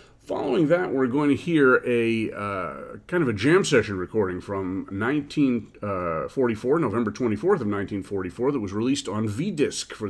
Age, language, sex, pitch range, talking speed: 40-59, English, male, 100-135 Hz, 160 wpm